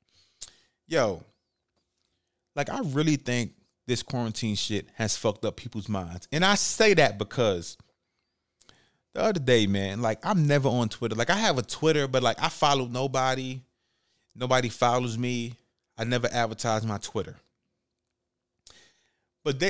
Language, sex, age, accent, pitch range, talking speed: English, male, 30-49, American, 100-140 Hz, 140 wpm